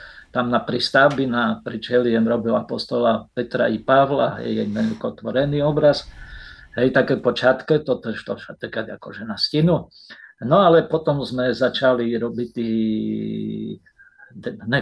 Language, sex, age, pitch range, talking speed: Slovak, male, 50-69, 115-155 Hz, 135 wpm